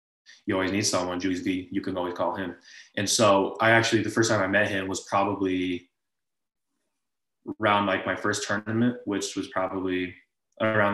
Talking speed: 165 wpm